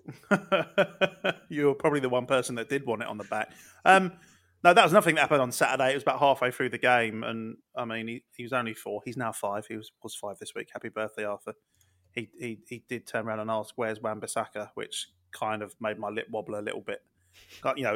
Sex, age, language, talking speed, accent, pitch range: male, 20-39, English, 235 wpm, British, 110-140 Hz